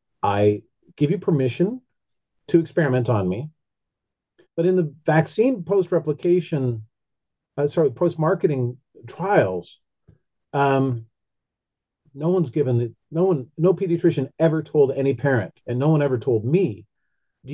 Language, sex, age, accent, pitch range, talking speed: English, male, 40-59, American, 125-175 Hz, 120 wpm